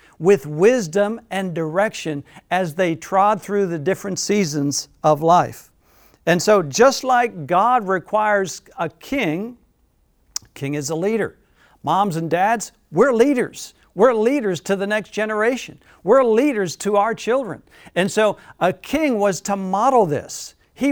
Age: 60-79